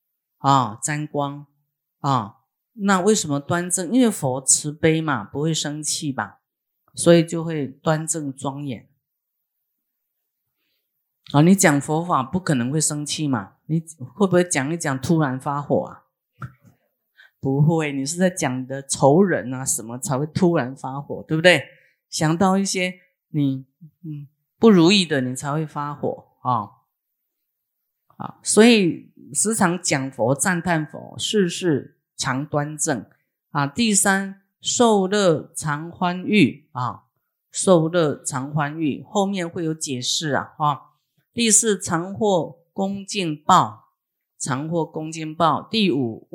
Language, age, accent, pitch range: Chinese, 30-49, native, 140-180 Hz